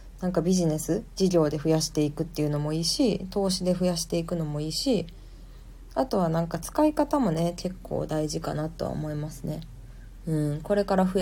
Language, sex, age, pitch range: Japanese, female, 20-39, 155-195 Hz